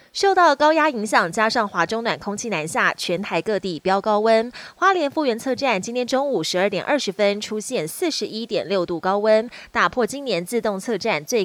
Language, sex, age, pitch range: Chinese, female, 20-39, 190-255 Hz